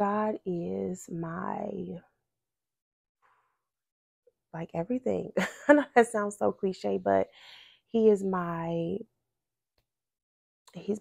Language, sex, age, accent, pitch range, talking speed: English, female, 20-39, American, 165-200 Hz, 85 wpm